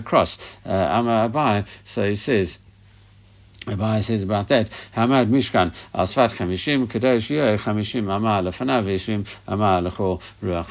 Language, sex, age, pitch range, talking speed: English, male, 60-79, 90-110 Hz, 105 wpm